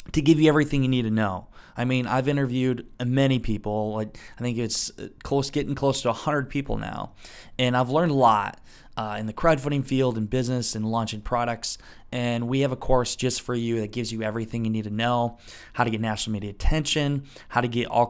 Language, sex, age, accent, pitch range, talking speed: English, male, 20-39, American, 110-130 Hz, 220 wpm